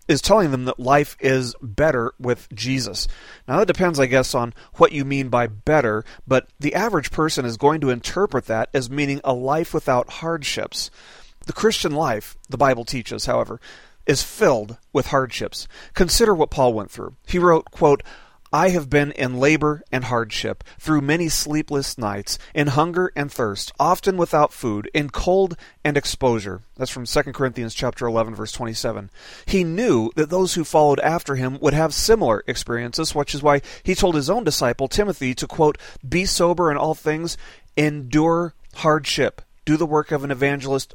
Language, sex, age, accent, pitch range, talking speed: English, male, 40-59, American, 125-160 Hz, 175 wpm